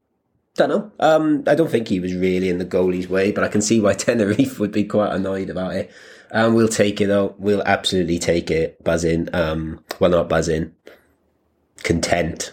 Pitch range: 85-100 Hz